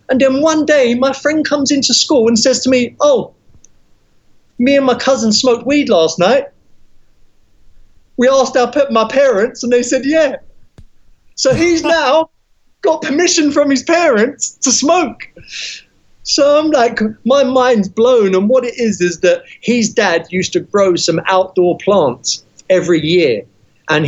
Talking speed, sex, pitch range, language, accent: 160 wpm, male, 180-250 Hz, English, British